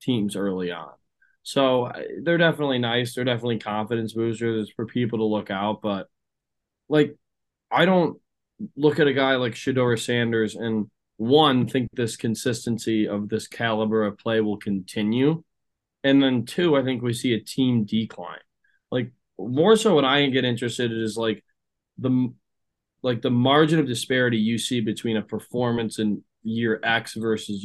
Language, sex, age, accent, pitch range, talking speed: English, male, 20-39, American, 110-135 Hz, 160 wpm